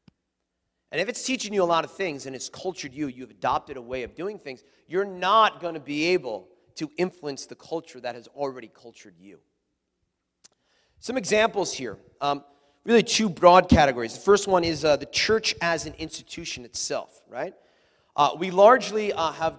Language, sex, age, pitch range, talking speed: English, male, 30-49, 130-180 Hz, 185 wpm